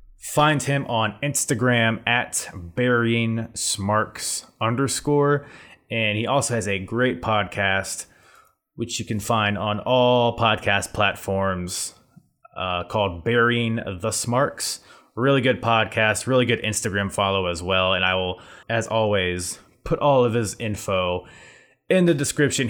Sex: male